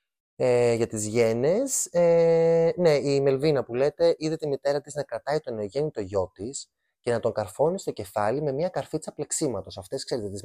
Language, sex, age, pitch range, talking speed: Greek, male, 20-39, 100-150 Hz, 185 wpm